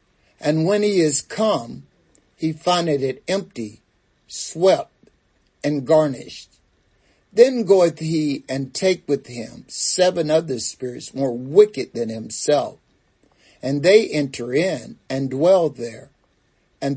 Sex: male